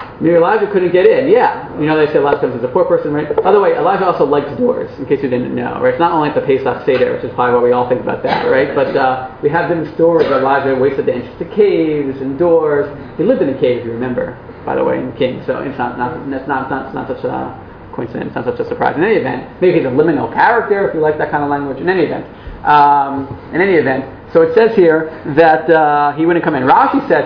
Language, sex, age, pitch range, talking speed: English, male, 30-49, 135-225 Hz, 275 wpm